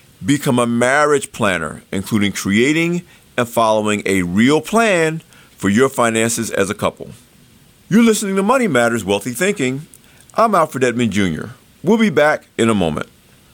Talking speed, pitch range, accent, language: 150 wpm, 100-155 Hz, American, English